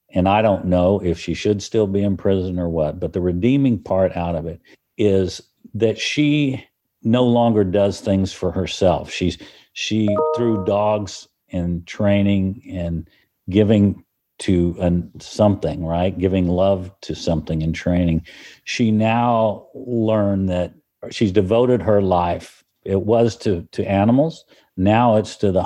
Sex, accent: male, American